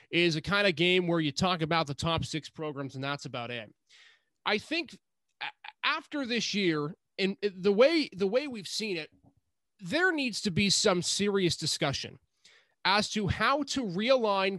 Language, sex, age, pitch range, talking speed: English, male, 30-49, 160-230 Hz, 175 wpm